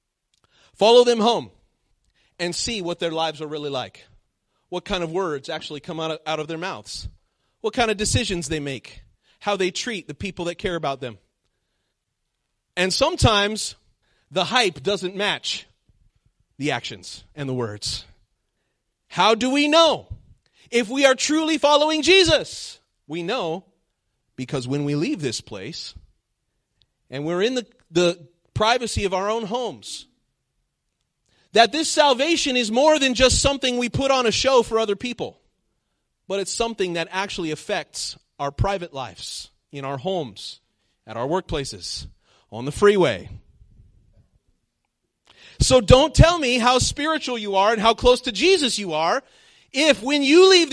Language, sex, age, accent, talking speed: English, male, 30-49, American, 155 wpm